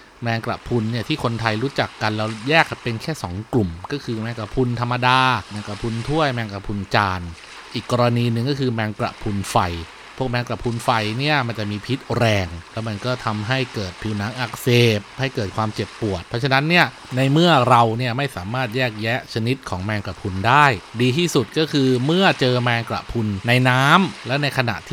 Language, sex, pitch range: Thai, male, 105-135 Hz